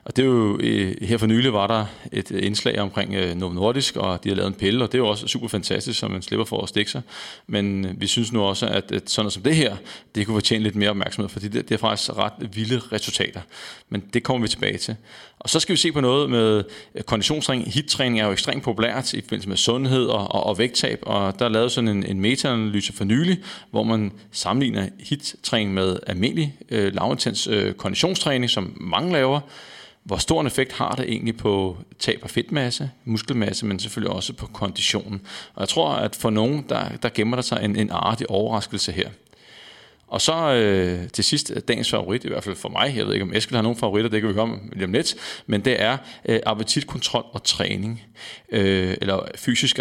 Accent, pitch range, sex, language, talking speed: native, 100-125 Hz, male, Danish, 210 wpm